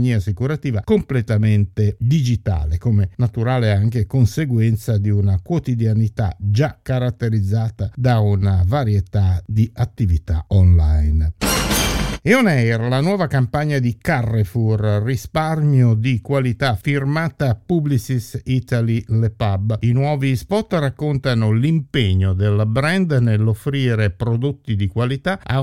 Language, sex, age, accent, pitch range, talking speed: Italian, male, 50-69, native, 105-140 Hz, 105 wpm